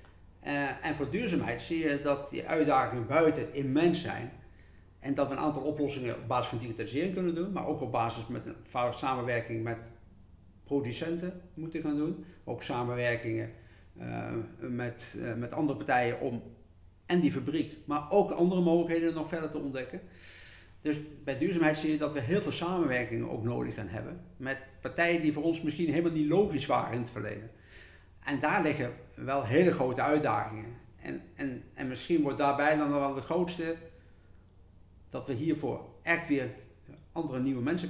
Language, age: Dutch, 50-69